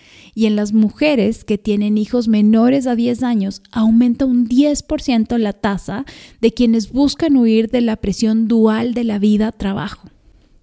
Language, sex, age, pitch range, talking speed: Spanish, female, 30-49, 195-245 Hz, 150 wpm